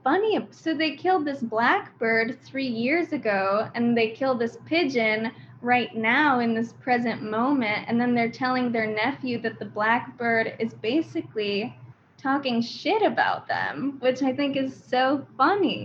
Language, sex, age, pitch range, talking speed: English, female, 10-29, 220-265 Hz, 155 wpm